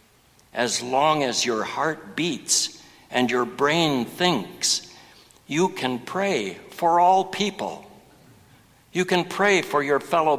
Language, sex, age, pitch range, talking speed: English, male, 60-79, 115-155 Hz, 125 wpm